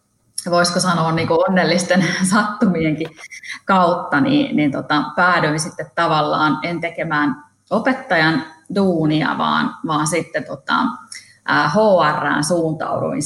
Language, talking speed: Finnish, 100 wpm